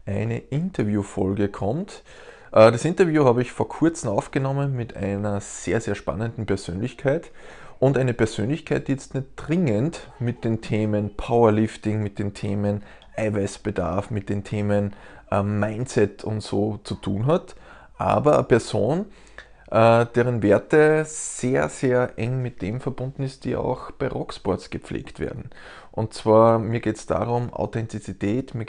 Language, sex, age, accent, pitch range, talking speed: German, male, 20-39, Austrian, 105-130 Hz, 140 wpm